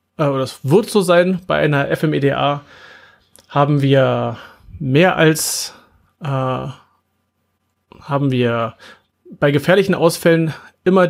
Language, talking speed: German, 95 wpm